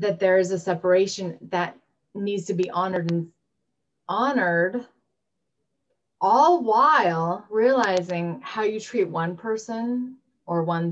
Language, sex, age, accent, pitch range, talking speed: English, female, 30-49, American, 160-185 Hz, 120 wpm